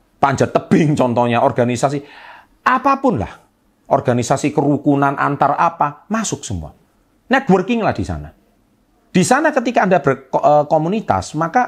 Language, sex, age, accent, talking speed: Indonesian, male, 40-59, native, 115 wpm